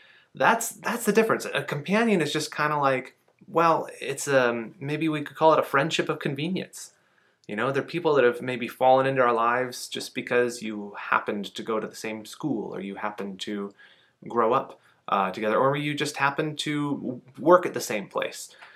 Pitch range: 115-155 Hz